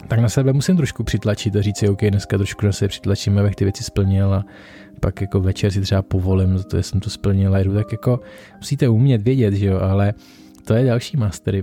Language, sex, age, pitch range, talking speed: Czech, male, 20-39, 105-115 Hz, 225 wpm